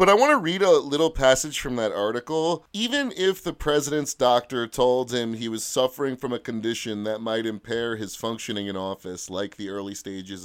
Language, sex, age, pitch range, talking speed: English, male, 30-49, 110-150 Hz, 200 wpm